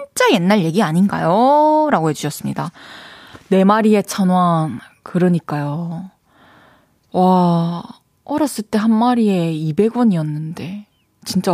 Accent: native